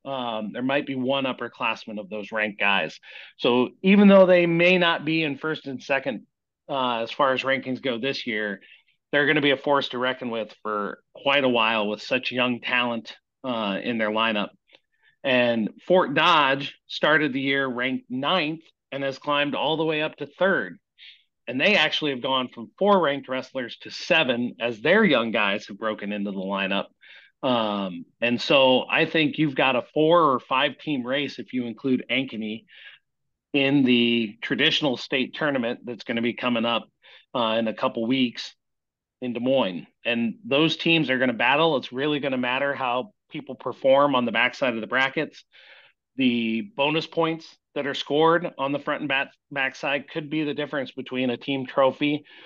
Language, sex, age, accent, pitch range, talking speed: English, male, 40-59, American, 120-150 Hz, 190 wpm